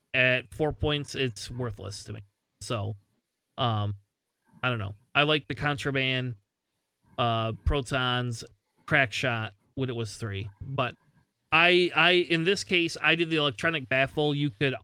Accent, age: American, 30-49